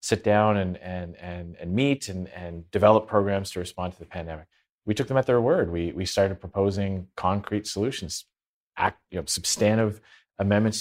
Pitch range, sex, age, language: 90-110 Hz, male, 30-49, English